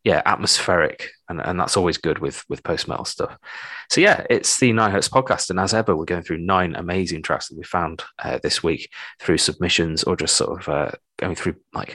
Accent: British